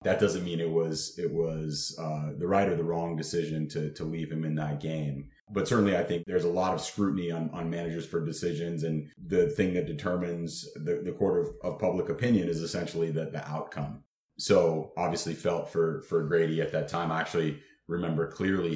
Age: 30-49